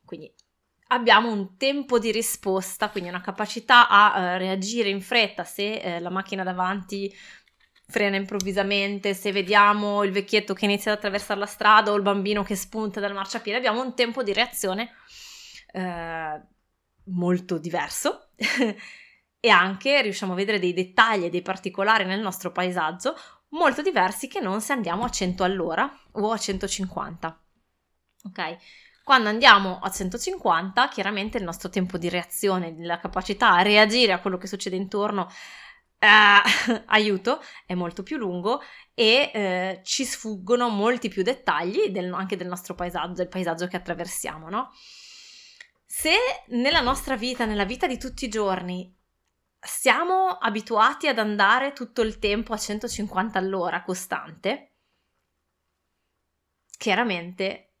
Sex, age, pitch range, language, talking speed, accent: female, 20-39, 185-225 Hz, Italian, 140 wpm, native